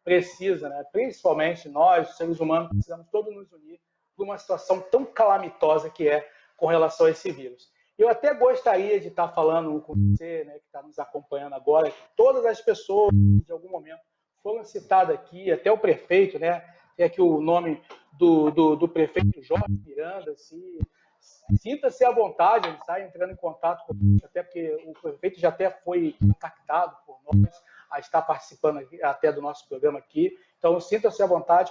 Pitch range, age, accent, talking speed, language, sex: 160-230 Hz, 40-59, Brazilian, 175 wpm, Portuguese, male